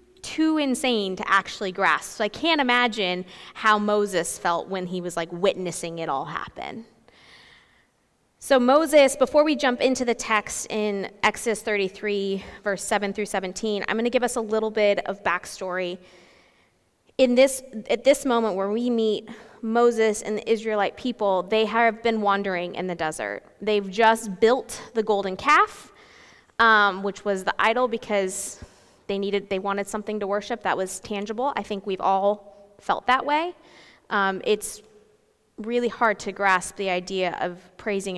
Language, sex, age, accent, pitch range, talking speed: English, female, 20-39, American, 195-245 Hz, 160 wpm